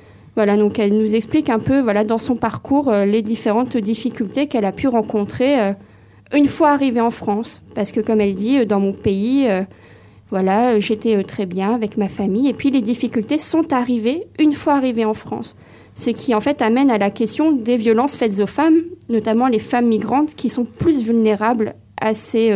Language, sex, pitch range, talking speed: French, female, 210-255 Hz, 190 wpm